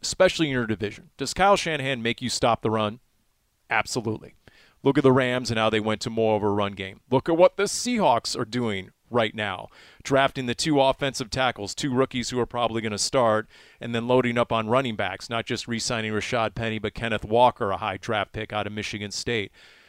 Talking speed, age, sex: 215 wpm, 30-49, male